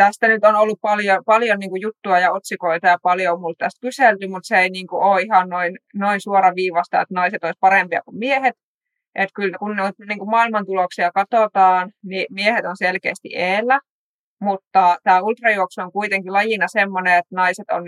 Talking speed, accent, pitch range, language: 185 wpm, native, 180-205 Hz, Finnish